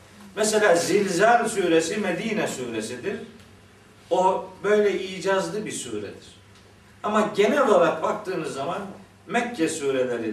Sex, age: male, 50-69